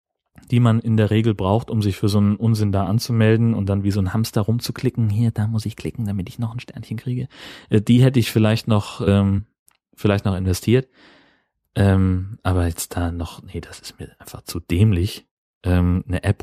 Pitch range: 95-110 Hz